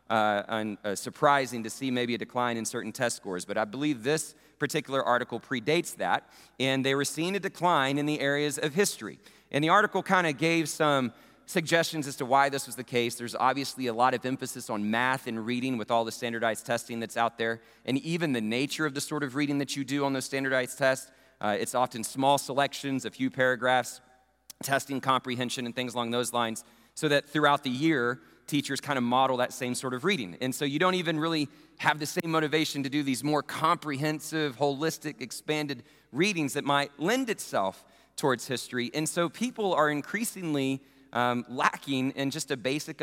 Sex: male